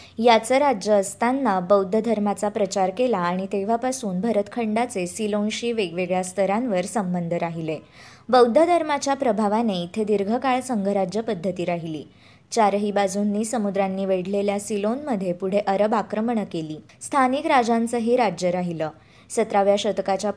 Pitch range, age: 190-230 Hz, 20-39